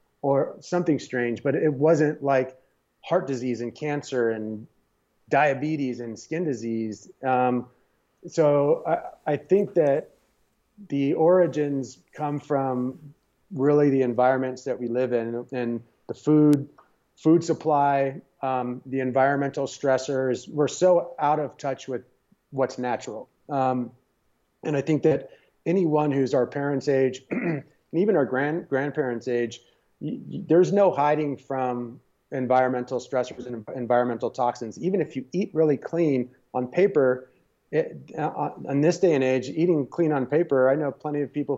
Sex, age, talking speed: male, 30-49, 140 wpm